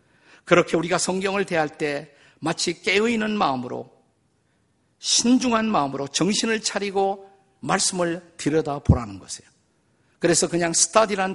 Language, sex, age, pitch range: Korean, male, 50-69, 145-195 Hz